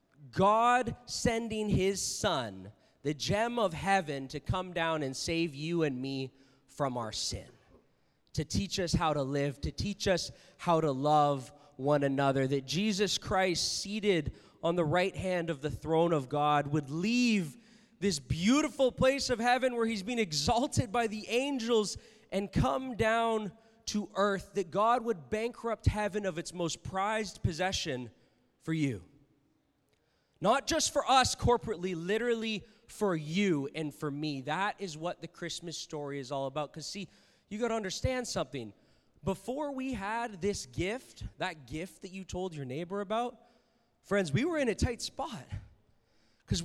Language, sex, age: English, male, 20-39